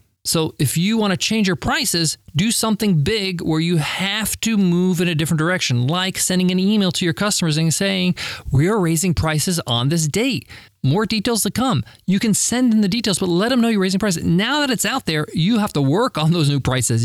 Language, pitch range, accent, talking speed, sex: English, 130-195 Hz, American, 230 wpm, male